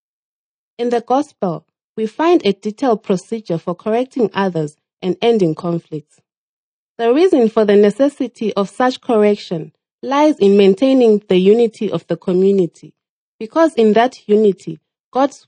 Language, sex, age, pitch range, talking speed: English, female, 30-49, 180-235 Hz, 135 wpm